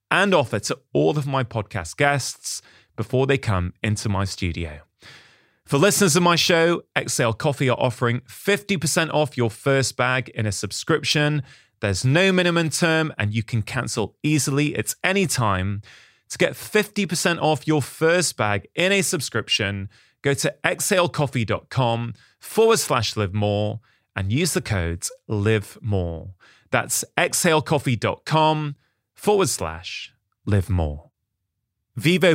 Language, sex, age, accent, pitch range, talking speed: English, male, 30-49, British, 105-155 Hz, 135 wpm